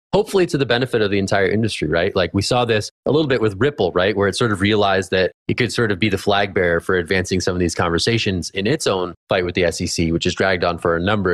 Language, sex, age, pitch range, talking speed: English, male, 20-39, 90-110 Hz, 280 wpm